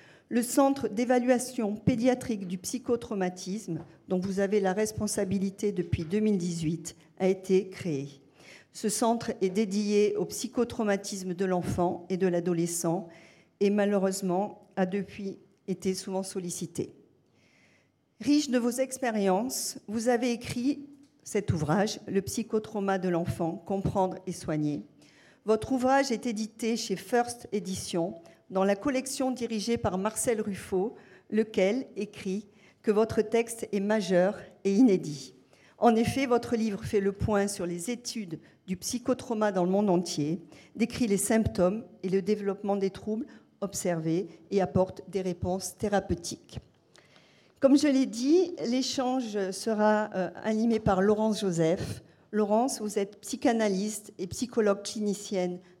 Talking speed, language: 130 wpm, French